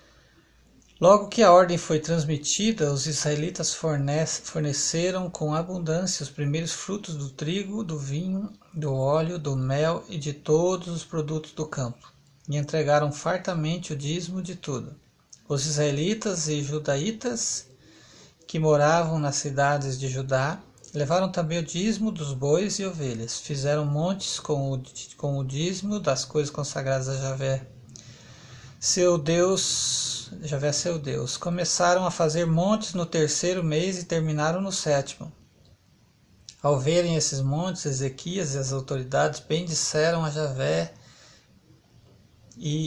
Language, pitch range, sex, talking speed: Portuguese, 140-170 Hz, male, 130 wpm